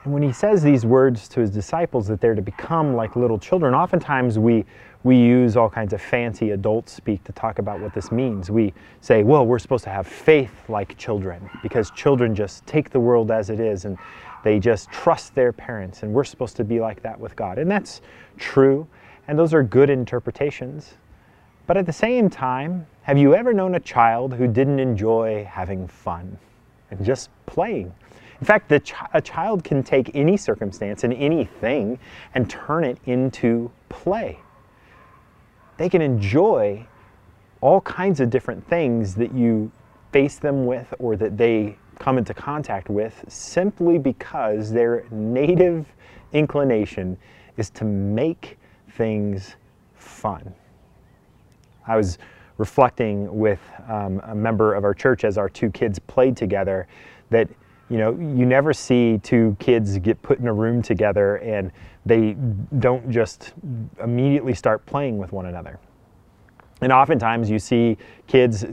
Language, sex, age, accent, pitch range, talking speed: English, male, 30-49, American, 105-130 Hz, 160 wpm